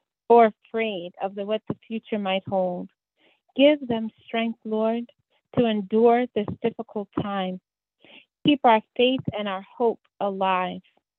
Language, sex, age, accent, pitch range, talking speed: English, female, 30-49, American, 195-240 Hz, 130 wpm